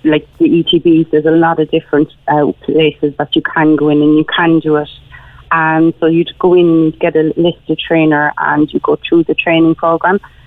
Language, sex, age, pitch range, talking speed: English, female, 30-49, 155-170 Hz, 205 wpm